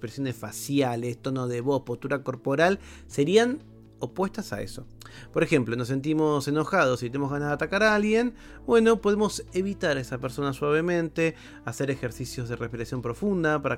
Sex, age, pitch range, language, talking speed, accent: male, 30-49, 120-170 Hz, Spanish, 155 wpm, Argentinian